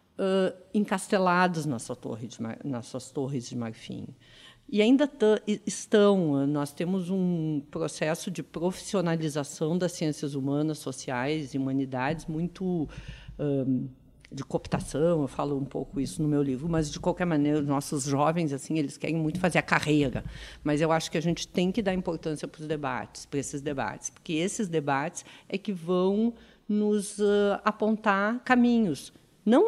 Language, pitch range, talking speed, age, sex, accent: Portuguese, 150-195 Hz, 160 wpm, 50-69, female, Brazilian